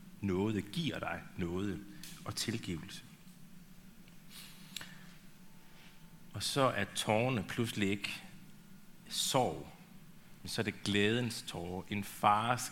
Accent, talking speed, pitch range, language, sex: native, 100 wpm, 110-180 Hz, Danish, male